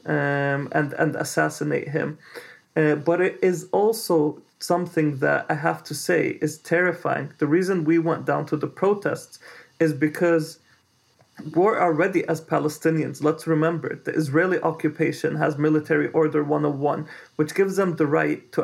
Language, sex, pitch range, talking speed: English, male, 150-170 Hz, 150 wpm